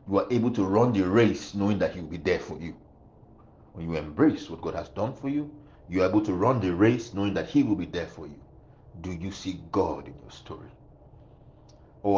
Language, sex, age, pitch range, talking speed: English, male, 50-69, 95-125 Hz, 230 wpm